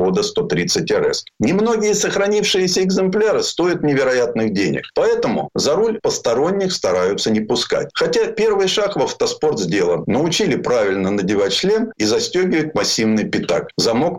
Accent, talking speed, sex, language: native, 125 wpm, male, Russian